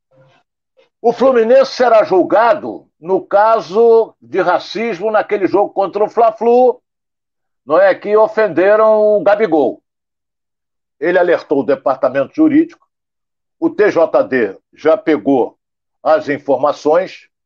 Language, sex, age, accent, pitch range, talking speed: Portuguese, male, 60-79, Brazilian, 170-270 Hz, 105 wpm